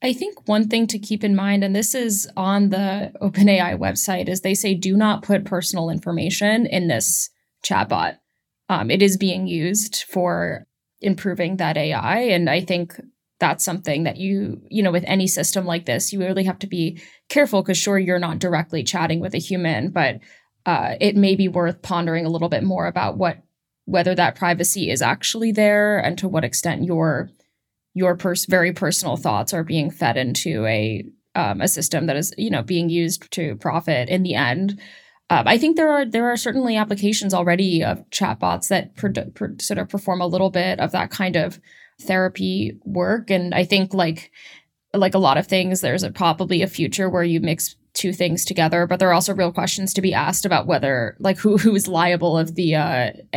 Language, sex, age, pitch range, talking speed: English, female, 10-29, 170-195 Hz, 200 wpm